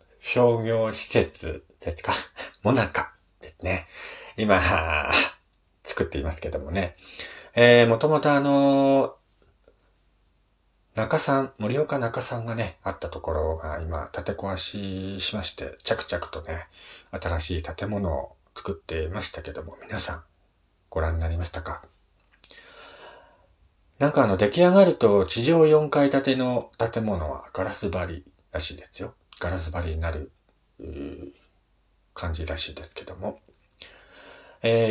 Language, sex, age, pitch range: Japanese, male, 40-59, 85-125 Hz